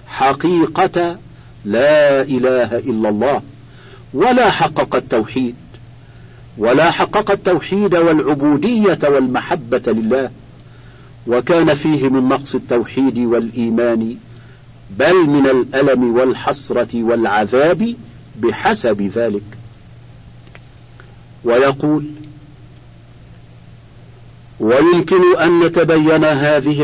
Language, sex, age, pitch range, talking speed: Arabic, male, 50-69, 120-165 Hz, 70 wpm